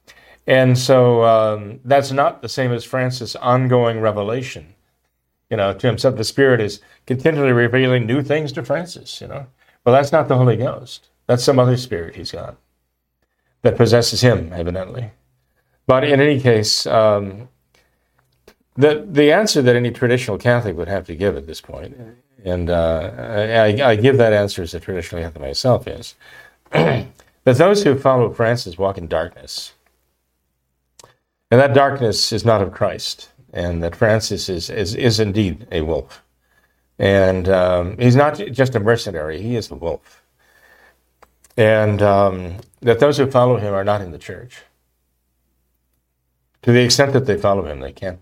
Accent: American